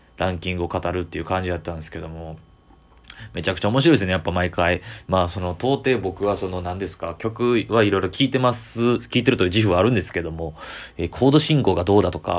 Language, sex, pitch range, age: Japanese, male, 85-105 Hz, 20-39